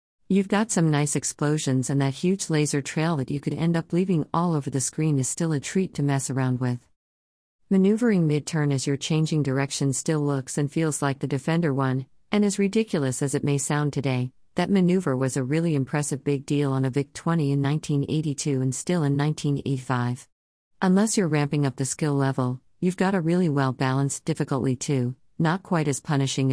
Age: 50-69